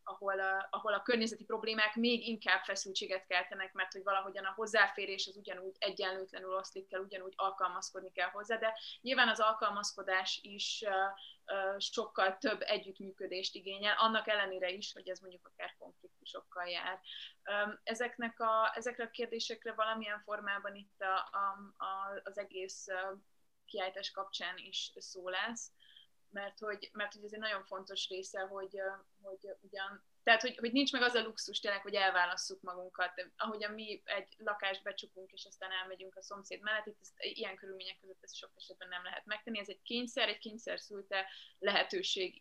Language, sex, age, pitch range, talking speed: Hungarian, female, 20-39, 190-210 Hz, 155 wpm